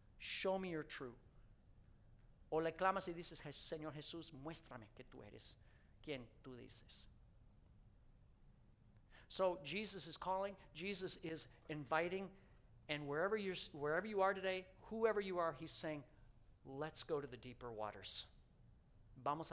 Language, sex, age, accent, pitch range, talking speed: English, male, 50-69, American, 115-155 Hz, 140 wpm